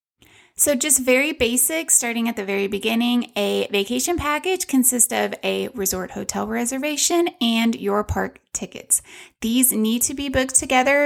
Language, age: English, 20-39